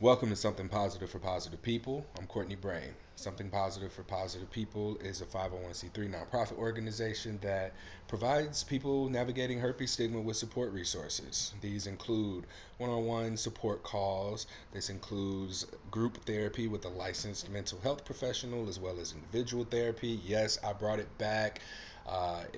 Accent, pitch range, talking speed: American, 90-115 Hz, 145 wpm